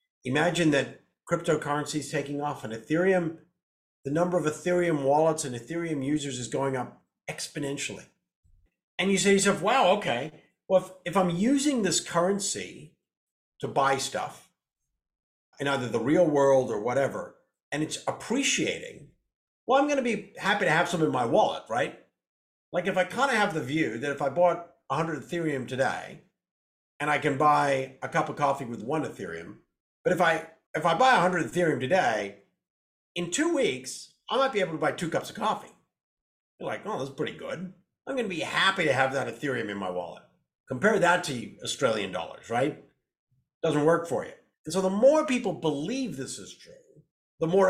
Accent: American